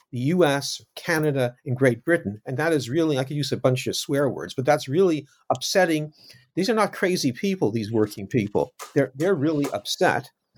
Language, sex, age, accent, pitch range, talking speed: English, male, 50-69, American, 130-170 Hz, 175 wpm